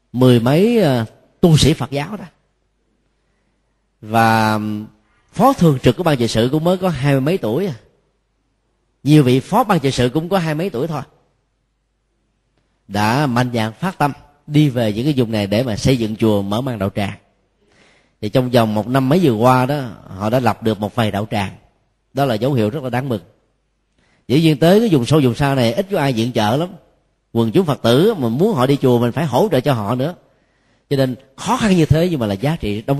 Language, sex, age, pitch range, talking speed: Vietnamese, male, 30-49, 110-150 Hz, 225 wpm